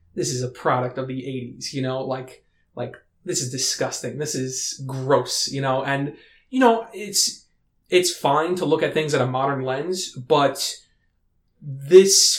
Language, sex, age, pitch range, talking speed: English, male, 20-39, 130-175 Hz, 170 wpm